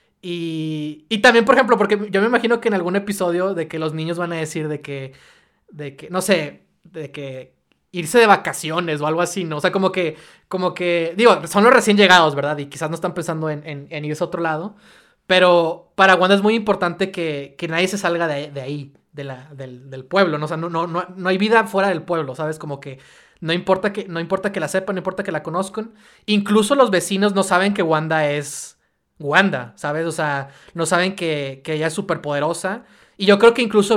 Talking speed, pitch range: 230 wpm, 155-195 Hz